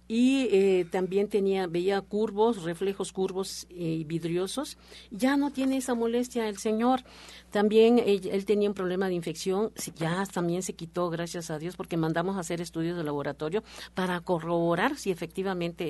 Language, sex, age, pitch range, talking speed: Spanish, female, 50-69, 170-220 Hz, 160 wpm